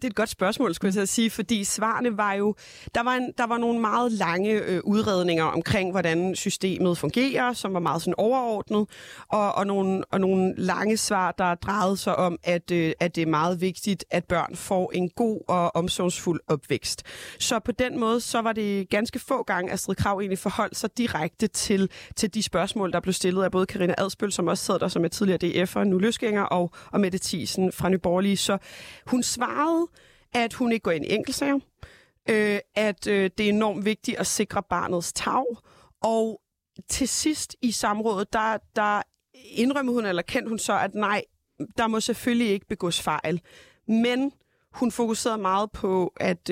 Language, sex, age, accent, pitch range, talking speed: Danish, female, 30-49, native, 180-225 Hz, 190 wpm